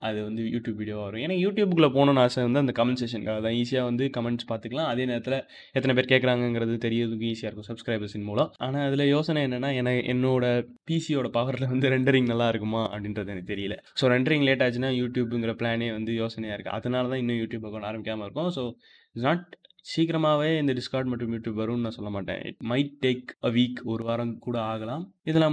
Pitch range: 110-130 Hz